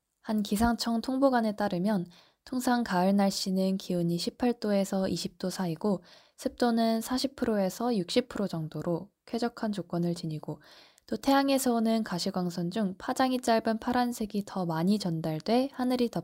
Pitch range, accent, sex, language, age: 170-225 Hz, native, female, Korean, 20-39